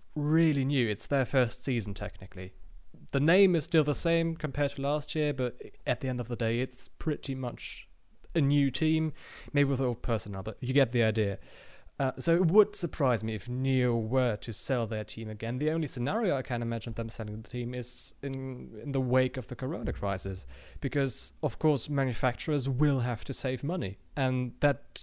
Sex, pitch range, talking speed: male, 115-145 Hz, 200 wpm